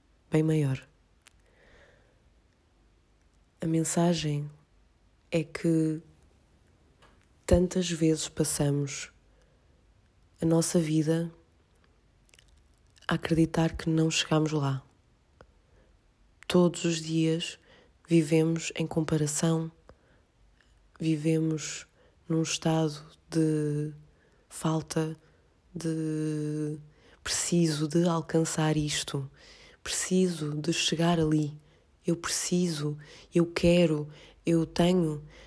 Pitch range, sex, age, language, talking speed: 145-165 Hz, female, 20-39, Portuguese, 75 wpm